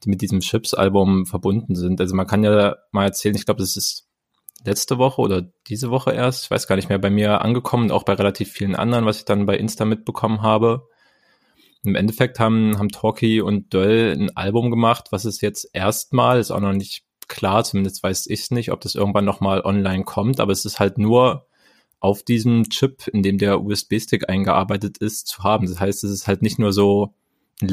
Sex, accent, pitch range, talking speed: male, German, 100-110 Hz, 210 wpm